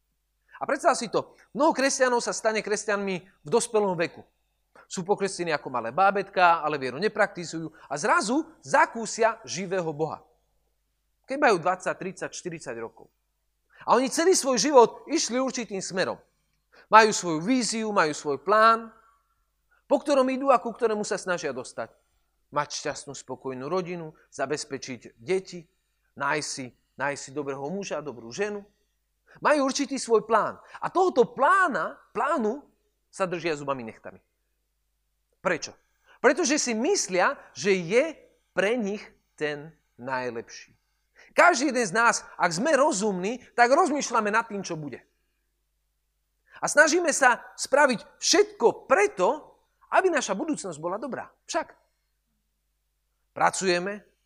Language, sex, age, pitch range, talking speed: Slovak, male, 40-59, 150-255 Hz, 125 wpm